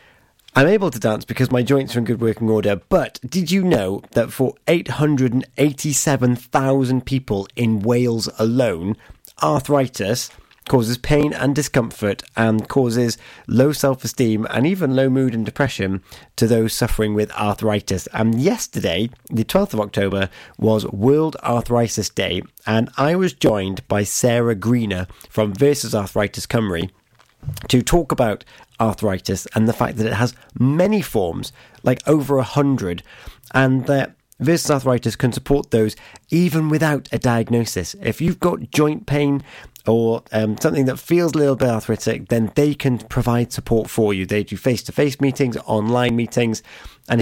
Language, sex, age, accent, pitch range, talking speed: English, male, 30-49, British, 110-140 Hz, 150 wpm